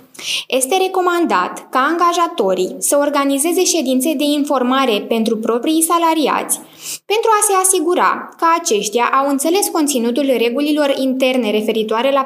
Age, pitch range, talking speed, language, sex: 10-29, 235-315 Hz, 120 wpm, Romanian, female